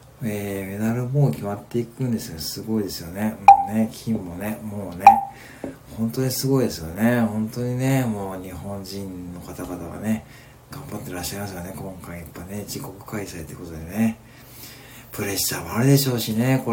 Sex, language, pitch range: male, Japanese, 95-130 Hz